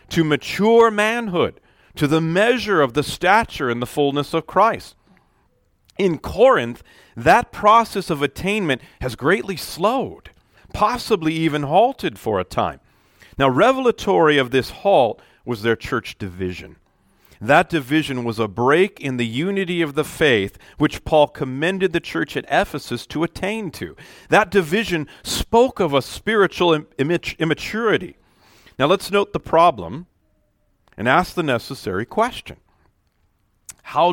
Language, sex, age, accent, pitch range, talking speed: English, male, 40-59, American, 120-180 Hz, 135 wpm